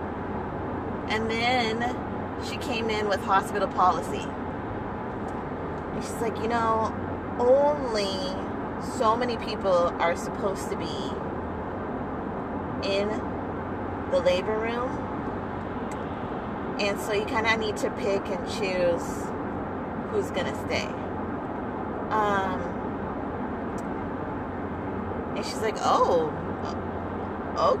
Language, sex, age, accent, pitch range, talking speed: English, female, 30-49, American, 200-245 Hz, 90 wpm